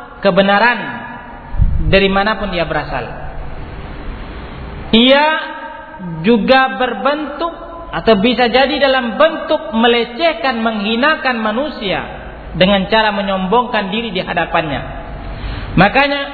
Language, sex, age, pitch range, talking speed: Malay, male, 40-59, 195-275 Hz, 85 wpm